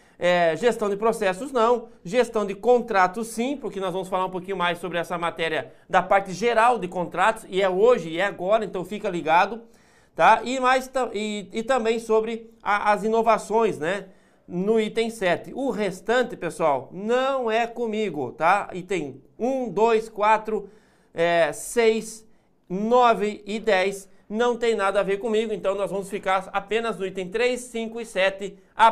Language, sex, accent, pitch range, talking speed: Portuguese, male, Brazilian, 195-240 Hz, 170 wpm